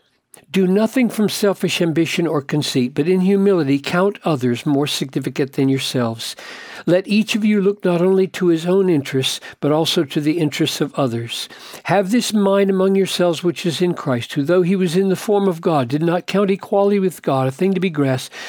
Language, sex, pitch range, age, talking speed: English, male, 145-195 Hz, 60-79, 205 wpm